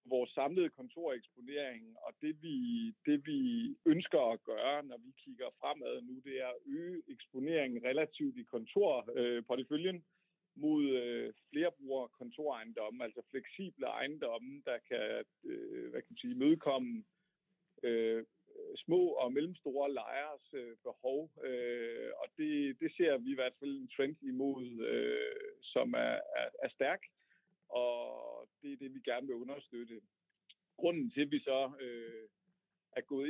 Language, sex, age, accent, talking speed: Danish, male, 50-69, native, 145 wpm